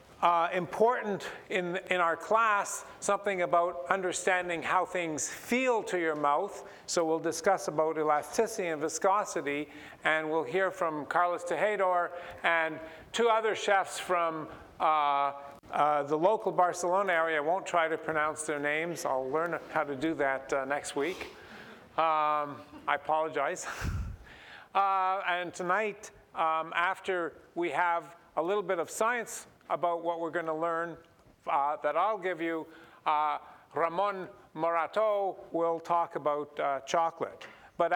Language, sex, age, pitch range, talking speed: English, male, 50-69, 155-190 Hz, 140 wpm